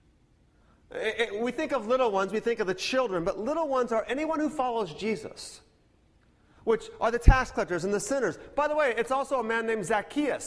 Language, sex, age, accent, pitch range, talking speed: English, male, 40-59, American, 150-230 Hz, 200 wpm